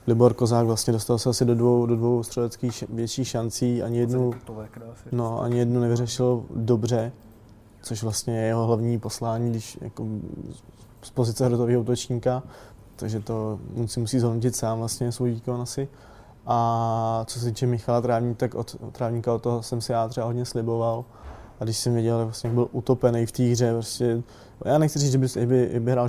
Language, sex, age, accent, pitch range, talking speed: Czech, male, 20-39, native, 115-125 Hz, 180 wpm